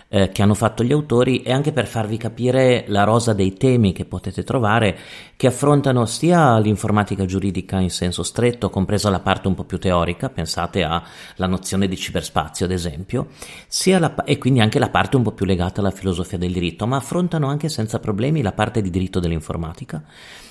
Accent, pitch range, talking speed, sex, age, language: native, 95-120 Hz, 180 wpm, male, 40-59, Italian